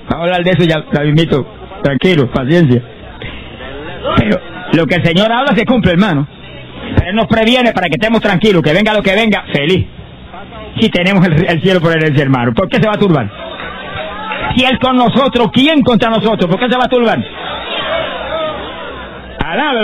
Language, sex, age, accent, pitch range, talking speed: Spanish, male, 50-69, Spanish, 145-215 Hz, 190 wpm